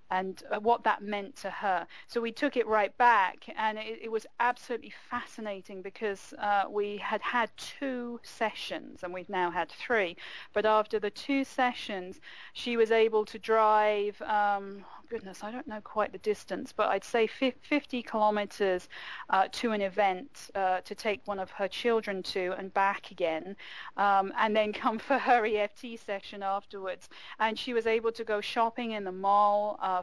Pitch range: 195-235 Hz